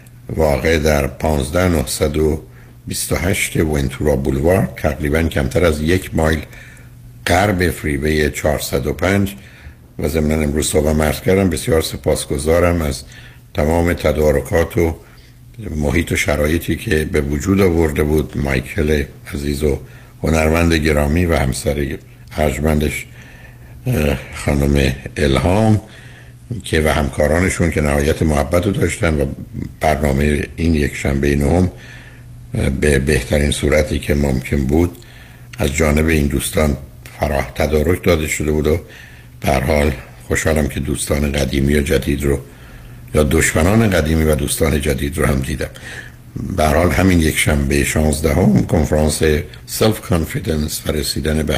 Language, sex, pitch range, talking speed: Persian, male, 70-85 Hz, 125 wpm